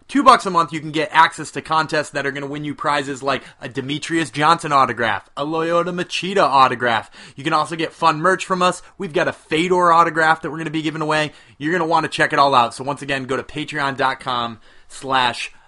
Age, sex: 30-49, male